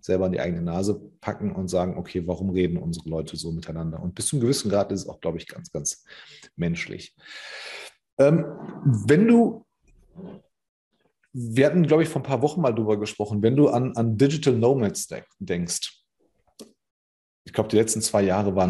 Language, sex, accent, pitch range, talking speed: German, male, German, 95-130 Hz, 185 wpm